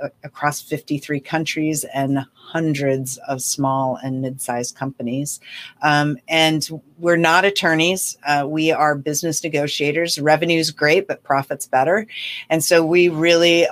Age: 40-59